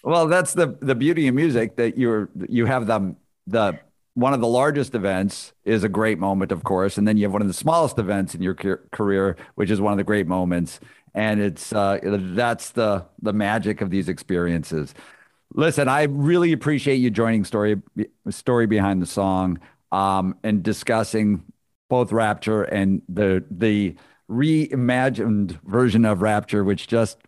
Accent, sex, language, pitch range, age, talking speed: American, male, English, 100-125 Hz, 50-69, 170 wpm